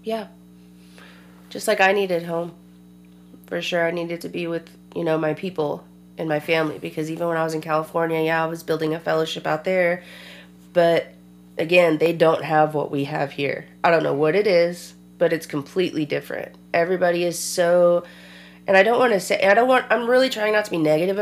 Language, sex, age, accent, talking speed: English, female, 30-49, American, 205 wpm